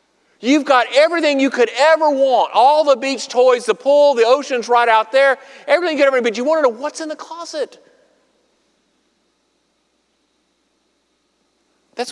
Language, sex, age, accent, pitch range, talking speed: English, male, 50-69, American, 210-295 Hz, 160 wpm